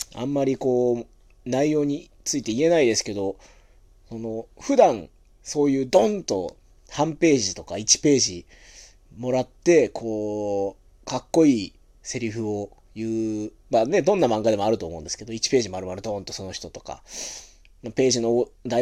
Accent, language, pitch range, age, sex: native, Japanese, 90-130 Hz, 30-49, male